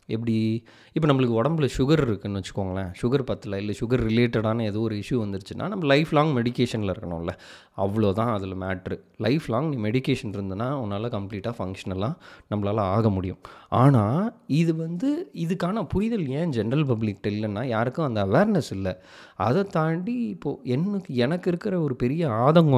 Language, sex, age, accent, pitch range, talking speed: Tamil, male, 20-39, native, 105-145 Hz, 150 wpm